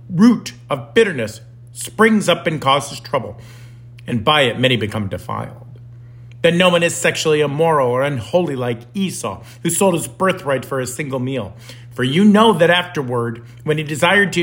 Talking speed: 170 wpm